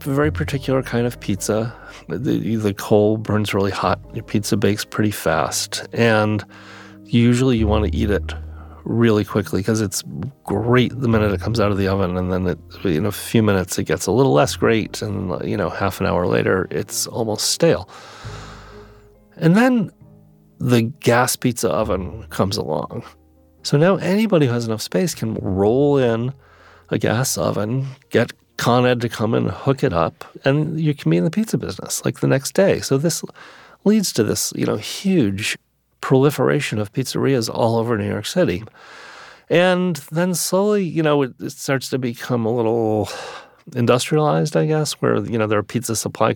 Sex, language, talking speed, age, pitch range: male, English, 180 wpm, 40-59, 105-135 Hz